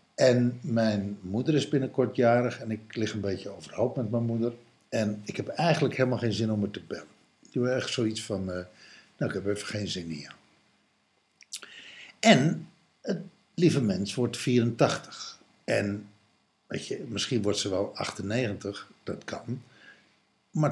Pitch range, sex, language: 105-135 Hz, male, Dutch